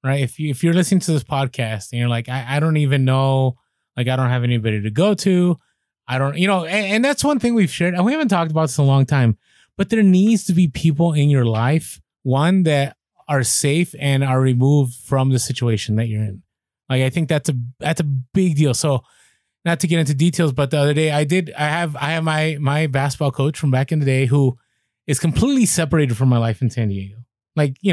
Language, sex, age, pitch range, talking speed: English, male, 20-39, 130-170 Hz, 245 wpm